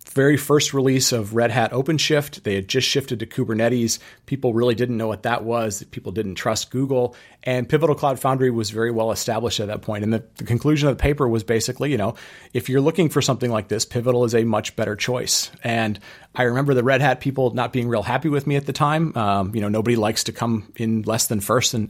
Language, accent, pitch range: English, American, 115-140 Hz